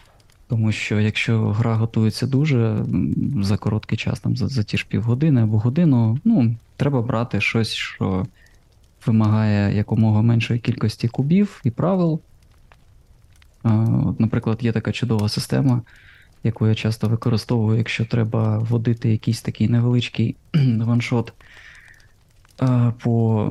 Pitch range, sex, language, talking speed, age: 110-125 Hz, male, Ukrainian, 115 wpm, 20-39